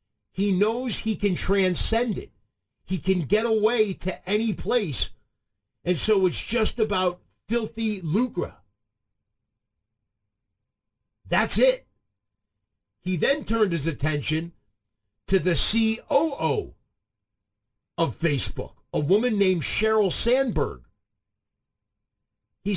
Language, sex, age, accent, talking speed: English, male, 50-69, American, 100 wpm